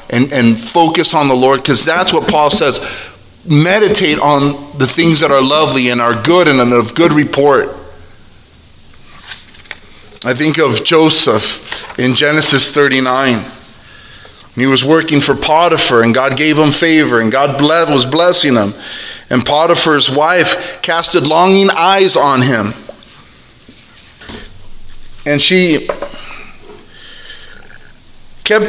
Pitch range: 125-170 Hz